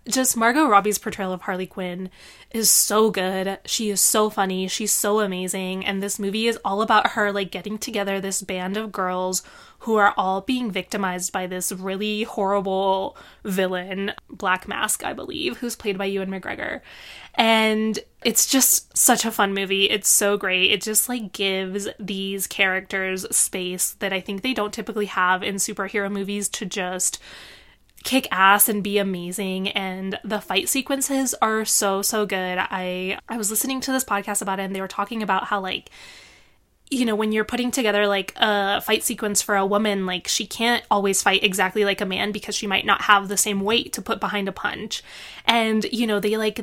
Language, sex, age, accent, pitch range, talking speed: English, female, 20-39, American, 190-215 Hz, 190 wpm